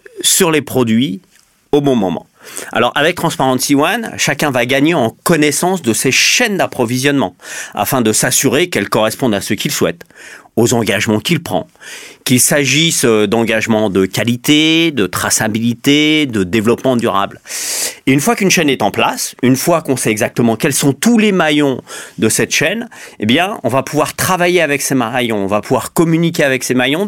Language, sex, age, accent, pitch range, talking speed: French, male, 40-59, French, 115-155 Hz, 175 wpm